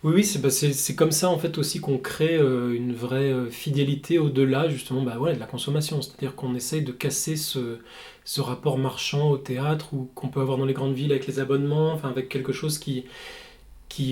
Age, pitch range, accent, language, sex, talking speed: 20-39, 130-155 Hz, French, French, male, 225 wpm